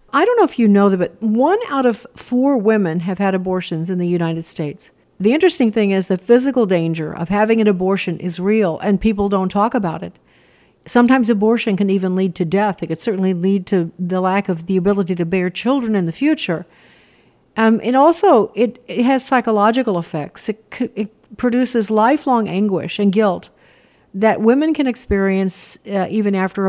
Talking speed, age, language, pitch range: 190 wpm, 50-69, English, 185-225 Hz